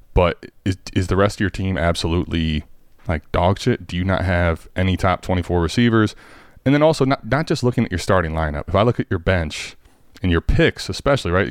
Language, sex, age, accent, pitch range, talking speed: English, male, 30-49, American, 90-115 Hz, 220 wpm